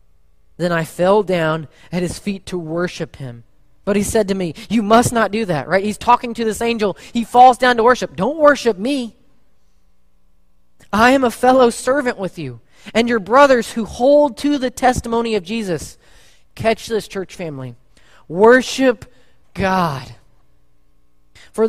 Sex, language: male, English